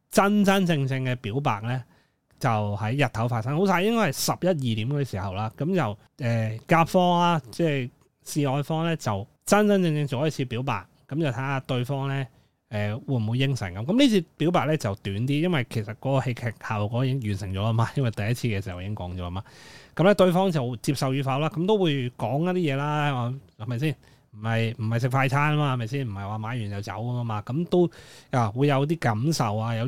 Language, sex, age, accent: Chinese, male, 20-39, native